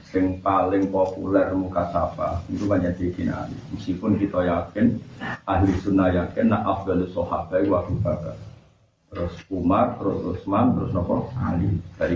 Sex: male